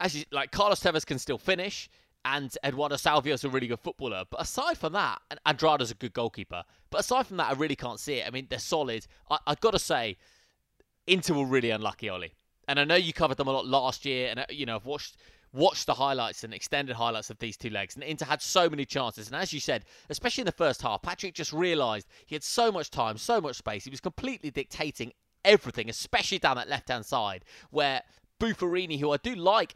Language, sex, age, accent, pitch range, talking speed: English, male, 20-39, British, 120-165 Hz, 230 wpm